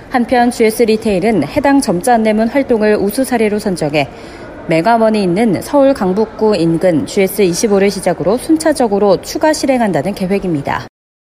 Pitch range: 185-250 Hz